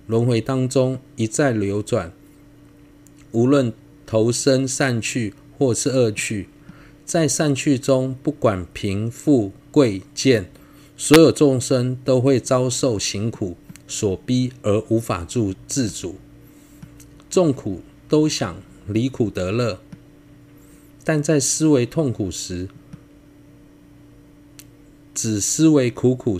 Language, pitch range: Chinese, 115-145 Hz